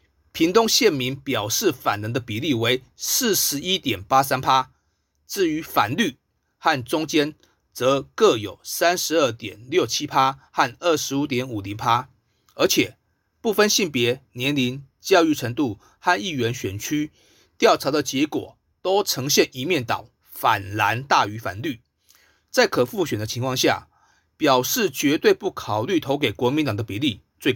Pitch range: 115-165 Hz